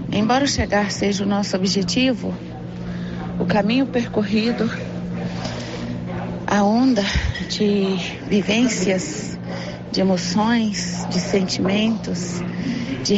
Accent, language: Brazilian, Portuguese